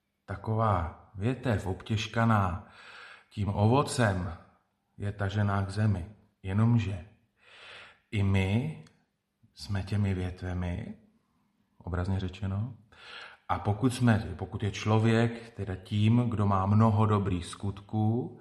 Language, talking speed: Slovak, 100 wpm